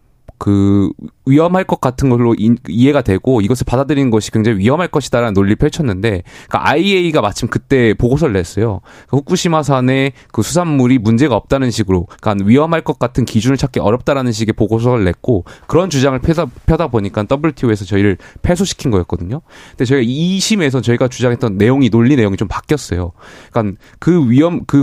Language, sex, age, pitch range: Korean, male, 20-39, 110-145 Hz